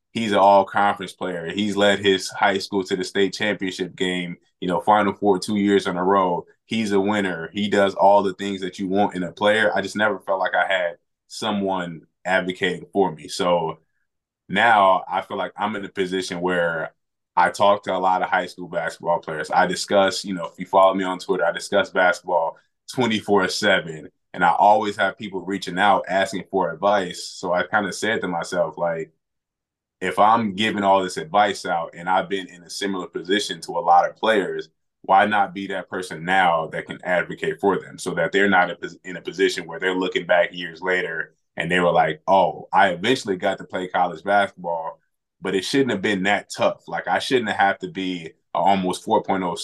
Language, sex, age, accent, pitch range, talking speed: English, male, 20-39, American, 90-100 Hz, 205 wpm